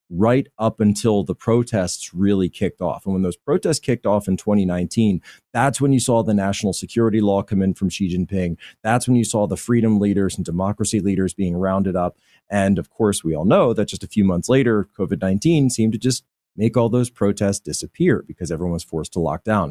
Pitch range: 95-120 Hz